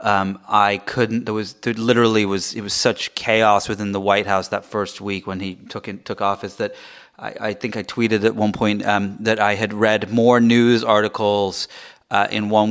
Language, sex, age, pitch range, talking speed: English, male, 30-49, 100-115 Hz, 210 wpm